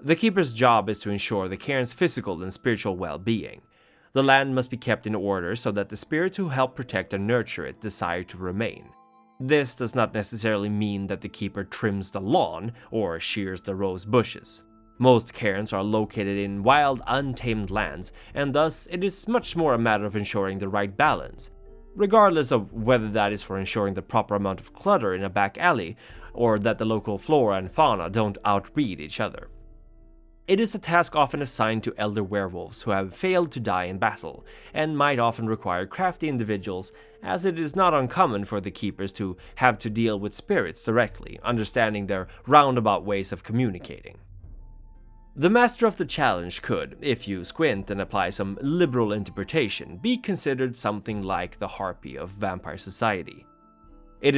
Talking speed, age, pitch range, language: 180 wpm, 20-39, 100-130 Hz, English